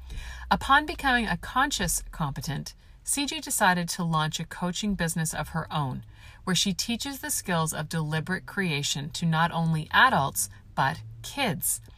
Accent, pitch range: American, 150-205 Hz